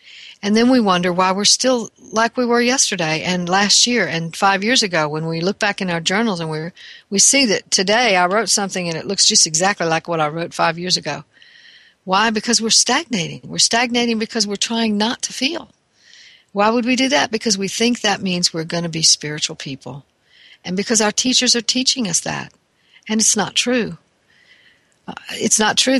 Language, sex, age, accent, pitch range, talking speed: English, female, 60-79, American, 180-235 Hz, 210 wpm